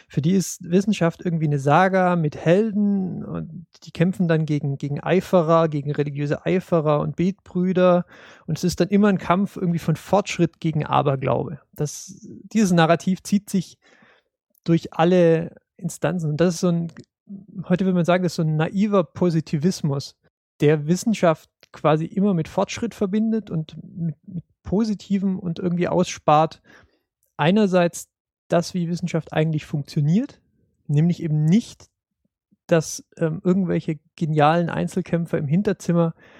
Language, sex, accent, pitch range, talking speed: German, male, German, 155-185 Hz, 140 wpm